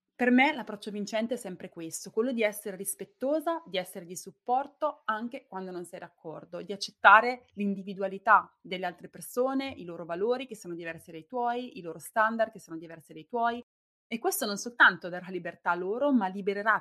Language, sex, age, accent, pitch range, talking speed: Italian, female, 20-39, native, 180-240 Hz, 185 wpm